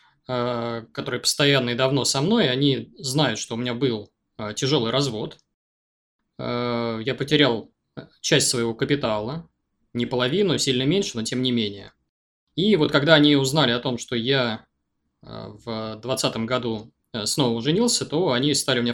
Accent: native